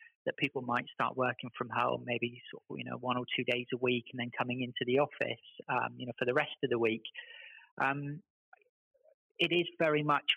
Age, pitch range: 40-59, 125-145 Hz